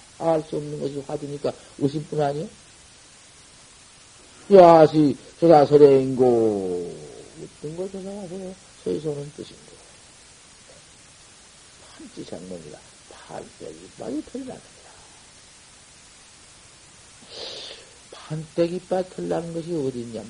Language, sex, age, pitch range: Korean, male, 50-69, 150-190 Hz